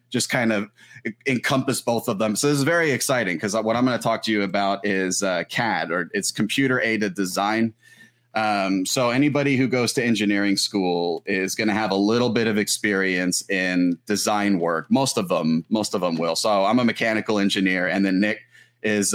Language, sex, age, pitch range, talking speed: English, male, 30-49, 100-120 Hz, 205 wpm